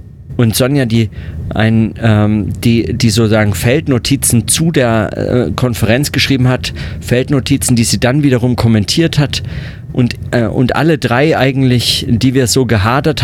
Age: 40-59